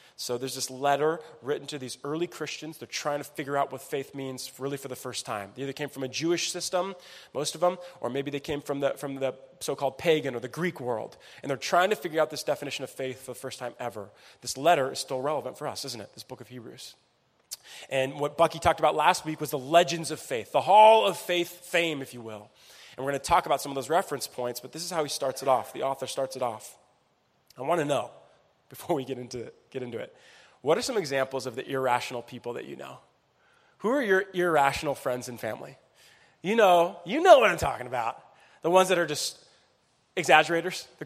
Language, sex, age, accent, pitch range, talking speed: English, male, 20-39, American, 130-180 Hz, 235 wpm